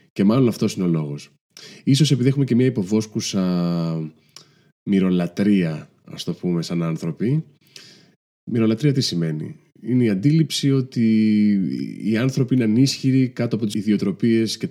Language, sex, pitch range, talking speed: Greek, male, 95-140 Hz, 140 wpm